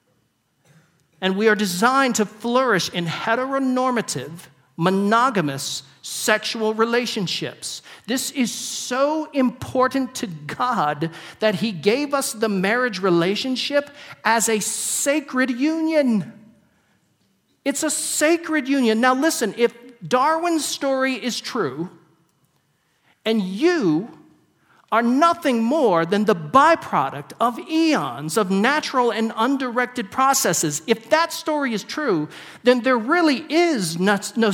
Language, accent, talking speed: English, American, 110 wpm